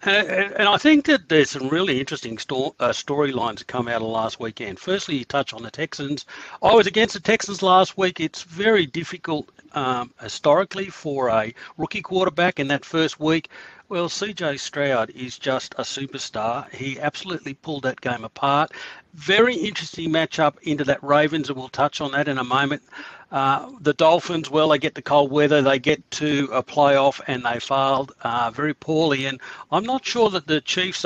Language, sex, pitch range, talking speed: English, male, 130-160 Hz, 180 wpm